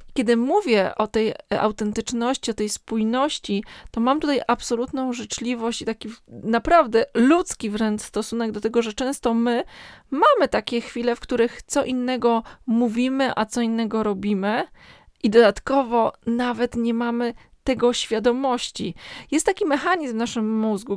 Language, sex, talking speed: Polish, female, 140 wpm